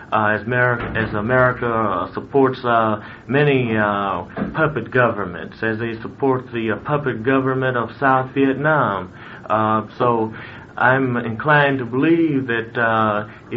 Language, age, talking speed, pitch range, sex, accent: English, 30-49, 135 wpm, 110-130 Hz, male, American